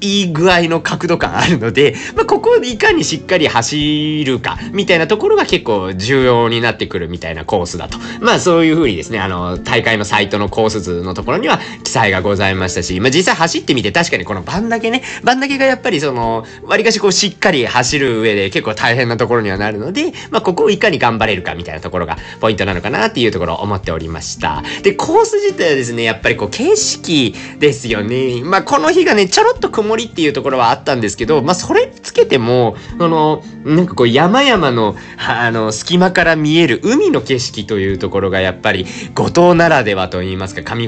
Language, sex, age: Japanese, male, 40-59